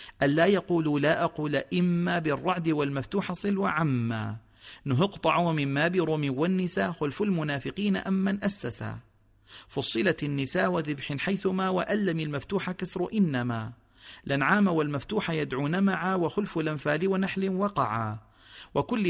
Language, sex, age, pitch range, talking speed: Arabic, male, 40-59, 135-190 Hz, 110 wpm